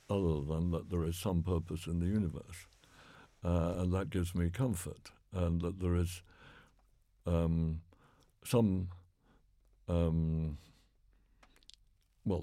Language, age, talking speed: English, 60-79, 115 wpm